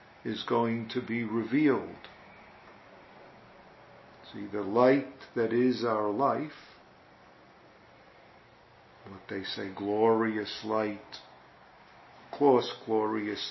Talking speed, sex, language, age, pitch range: 90 wpm, male, English, 50-69, 105-125 Hz